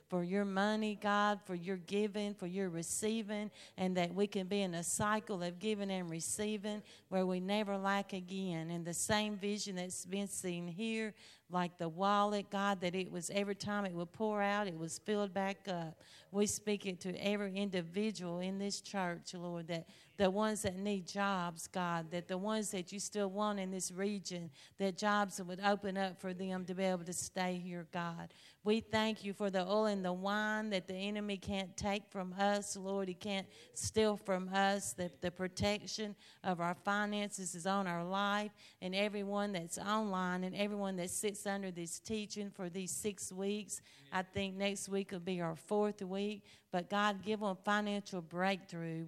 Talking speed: 190 wpm